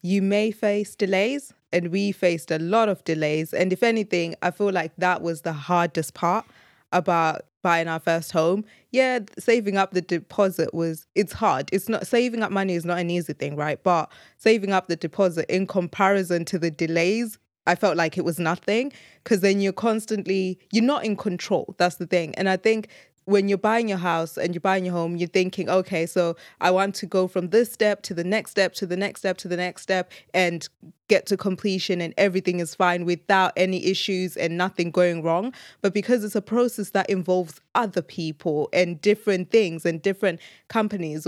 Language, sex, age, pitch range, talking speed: English, female, 20-39, 175-205 Hz, 200 wpm